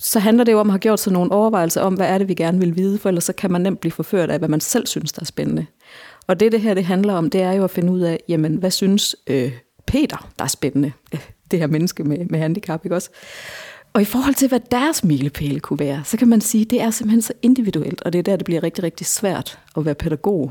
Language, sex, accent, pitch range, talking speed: Danish, female, native, 155-210 Hz, 280 wpm